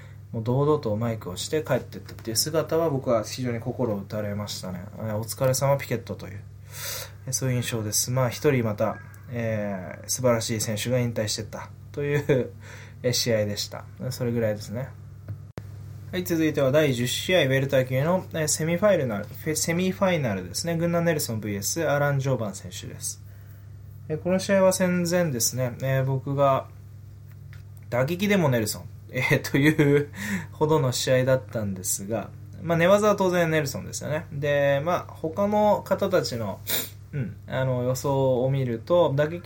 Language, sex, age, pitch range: Japanese, male, 20-39, 105-145 Hz